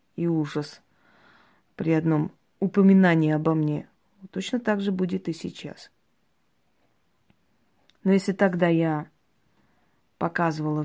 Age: 20-39